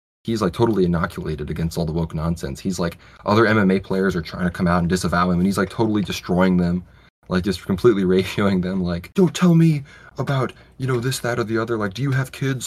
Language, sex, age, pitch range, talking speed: English, male, 20-39, 85-100 Hz, 235 wpm